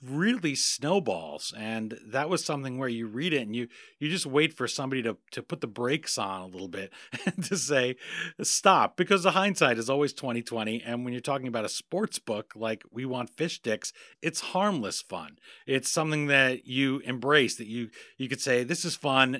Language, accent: English, American